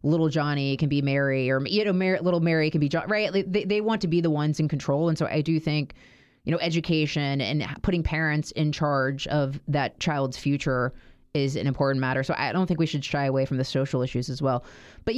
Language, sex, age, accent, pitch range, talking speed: English, female, 20-39, American, 135-165 Hz, 235 wpm